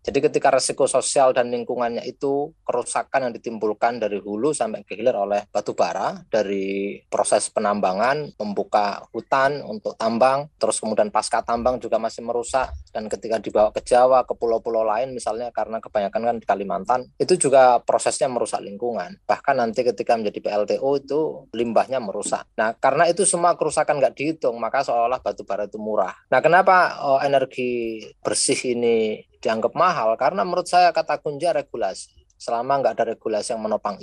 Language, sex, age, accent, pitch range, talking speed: Indonesian, male, 20-39, native, 110-150 Hz, 155 wpm